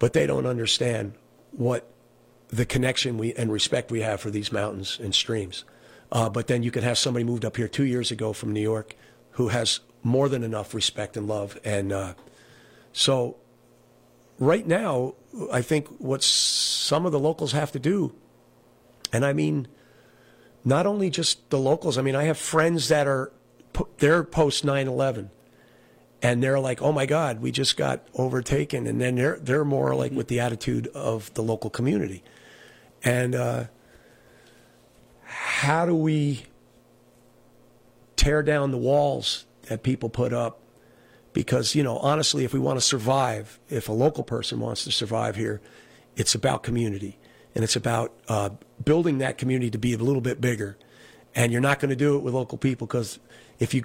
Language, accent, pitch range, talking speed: English, American, 105-135 Hz, 170 wpm